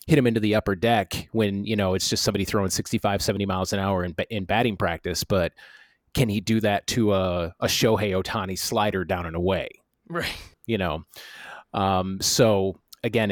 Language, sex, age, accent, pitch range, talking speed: English, male, 30-49, American, 100-120 Hz, 190 wpm